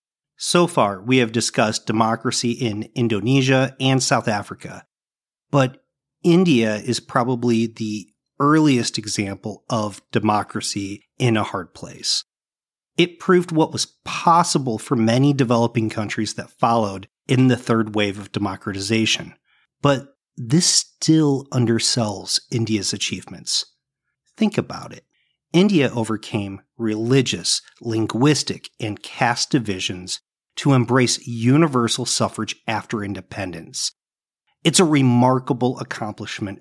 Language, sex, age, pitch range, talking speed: English, male, 40-59, 110-140 Hz, 110 wpm